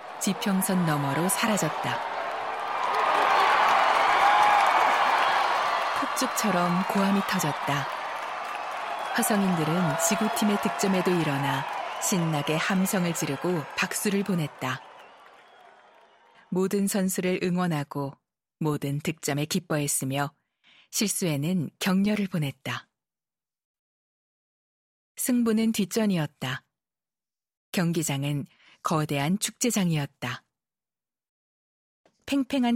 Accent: native